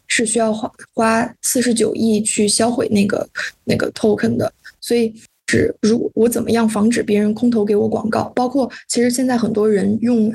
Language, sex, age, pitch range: Chinese, female, 20-39, 215-230 Hz